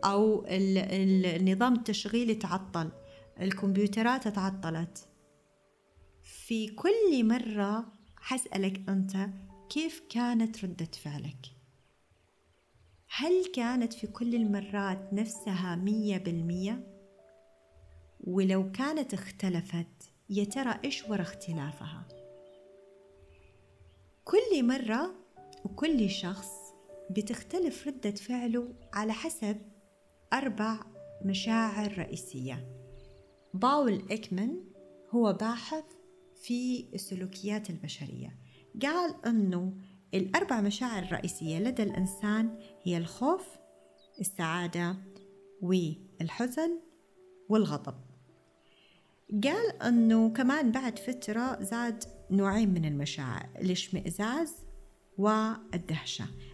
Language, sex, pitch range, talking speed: Arabic, female, 170-230 Hz, 75 wpm